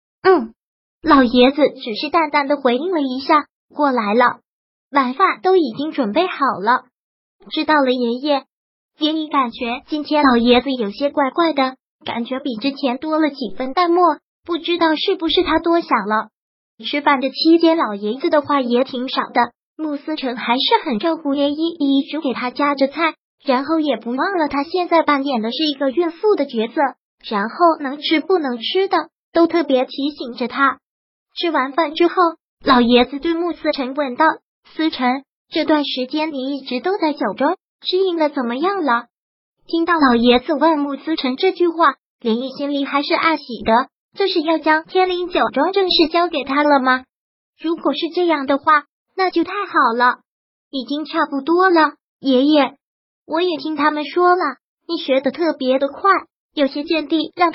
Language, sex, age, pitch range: Chinese, male, 20-39, 265-330 Hz